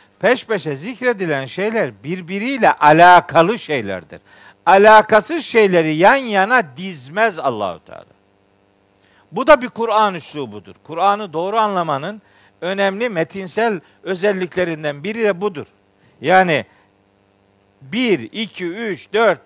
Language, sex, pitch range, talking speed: Turkish, male, 165-230 Hz, 100 wpm